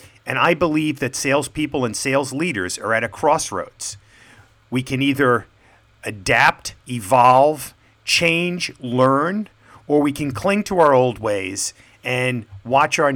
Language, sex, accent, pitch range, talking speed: English, male, American, 110-135 Hz, 135 wpm